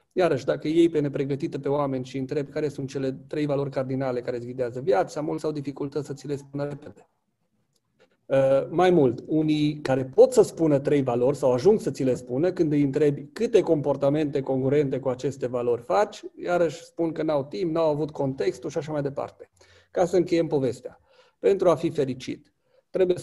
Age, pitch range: 40-59, 130-170 Hz